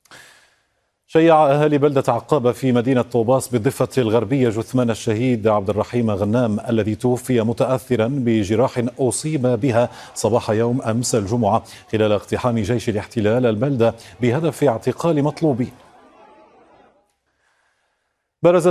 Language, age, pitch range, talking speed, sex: Arabic, 40-59, 105-135 Hz, 105 wpm, male